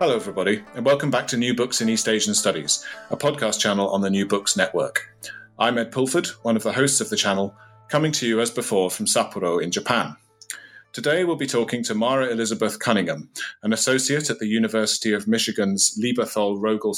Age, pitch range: 30-49, 105-130 Hz